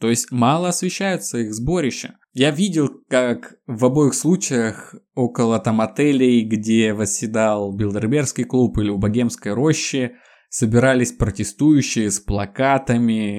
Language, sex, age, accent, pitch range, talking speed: Russian, male, 20-39, native, 115-170 Hz, 120 wpm